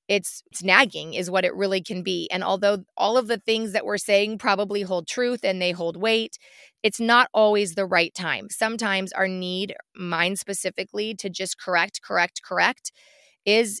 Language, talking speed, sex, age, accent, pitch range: English, 185 wpm, female, 30-49, American, 185-230 Hz